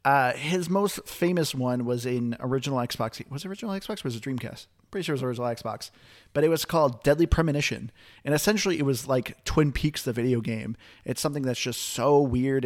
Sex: male